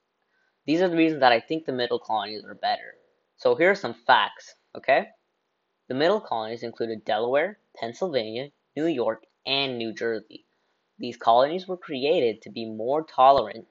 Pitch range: 115-150 Hz